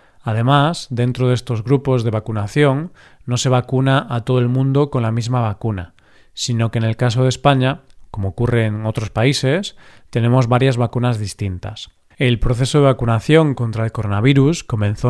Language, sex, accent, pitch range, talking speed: Spanish, male, Spanish, 115-135 Hz, 165 wpm